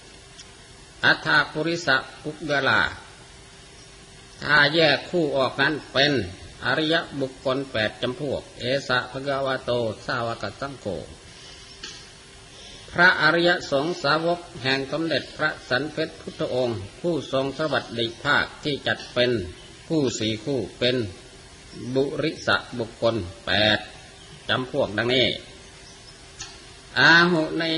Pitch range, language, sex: 125-155 Hz, Thai, male